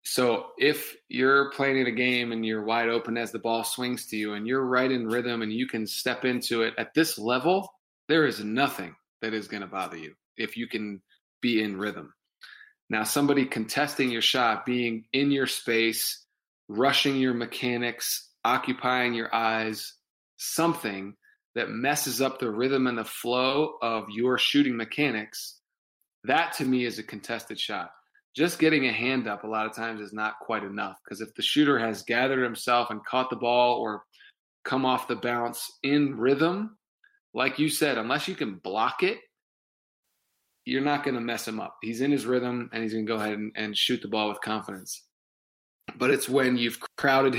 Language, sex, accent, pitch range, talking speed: English, male, American, 115-130 Hz, 190 wpm